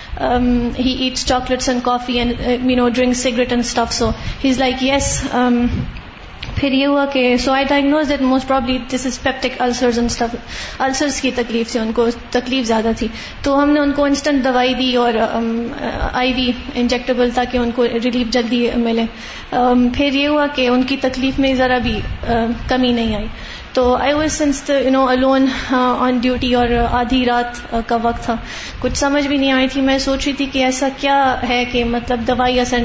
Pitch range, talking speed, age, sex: 245-275 Hz, 160 wpm, 30-49, female